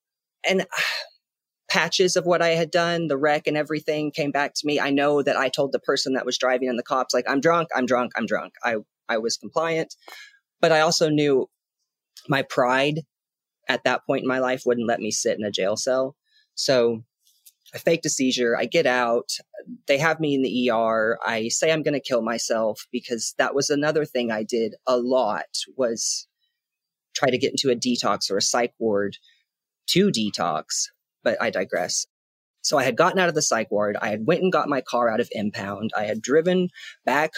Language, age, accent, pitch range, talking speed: English, 30-49, American, 110-155 Hz, 205 wpm